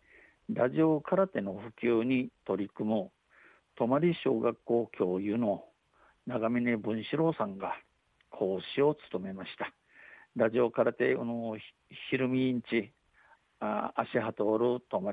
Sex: male